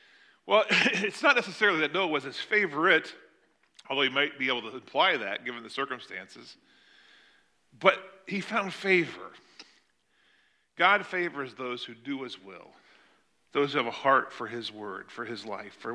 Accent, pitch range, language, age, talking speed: American, 135-220 Hz, English, 40-59, 160 wpm